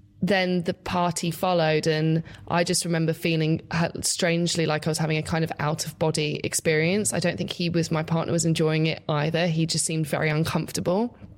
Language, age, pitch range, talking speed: English, 20-39, 155-180 Hz, 195 wpm